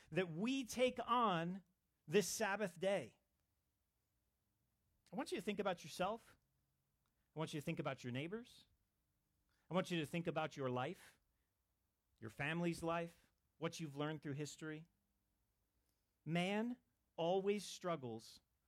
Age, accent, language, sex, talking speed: 40-59, American, English, male, 130 wpm